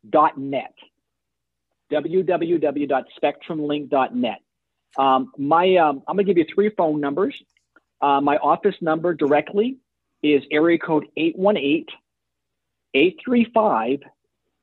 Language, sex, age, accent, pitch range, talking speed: English, male, 50-69, American, 145-195 Hz, 100 wpm